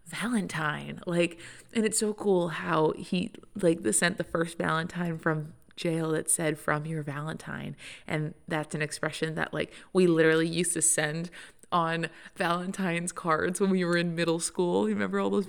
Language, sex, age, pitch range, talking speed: English, female, 20-39, 160-200 Hz, 175 wpm